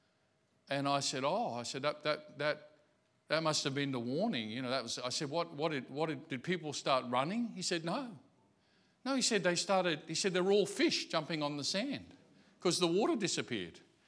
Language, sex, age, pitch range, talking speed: English, male, 50-69, 135-175 Hz, 220 wpm